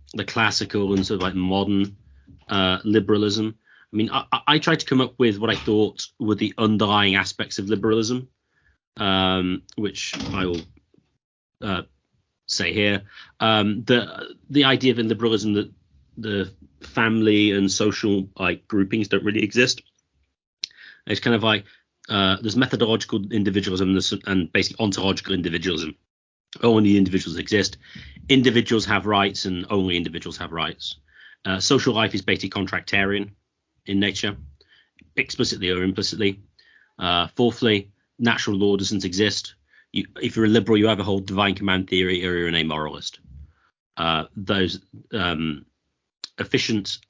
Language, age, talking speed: English, 30-49, 140 wpm